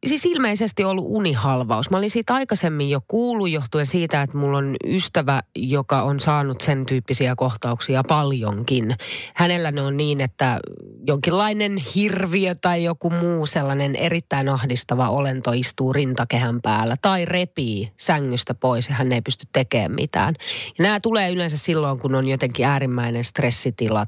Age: 30-49